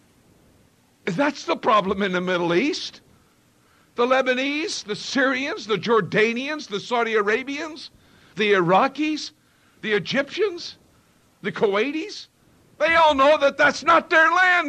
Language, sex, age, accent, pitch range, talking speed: English, male, 60-79, American, 175-270 Hz, 125 wpm